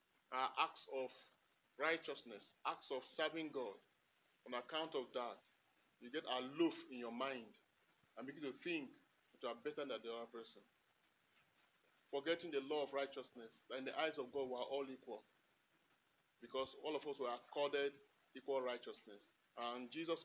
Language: English